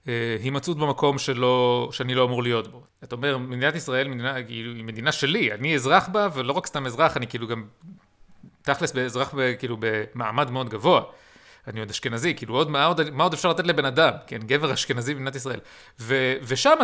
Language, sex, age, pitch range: Hebrew, male, 30-49, 125-165 Hz